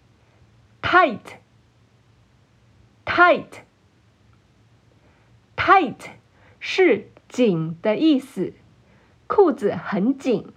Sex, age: female, 50-69